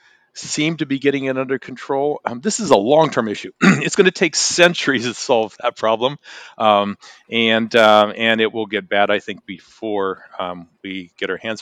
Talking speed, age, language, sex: 195 wpm, 40-59, English, male